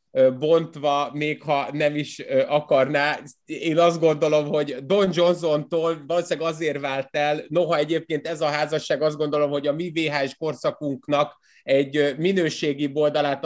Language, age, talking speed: Hungarian, 30-49, 140 wpm